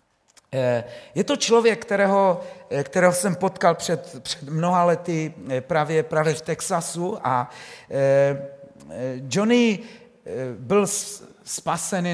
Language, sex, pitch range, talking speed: Czech, male, 150-195 Hz, 95 wpm